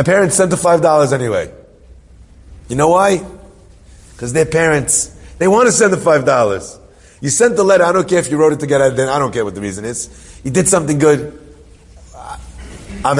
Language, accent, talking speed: English, American, 190 wpm